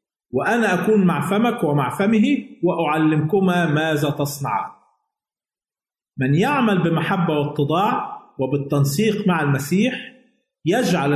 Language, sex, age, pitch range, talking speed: Arabic, male, 50-69, 145-195 Hz, 90 wpm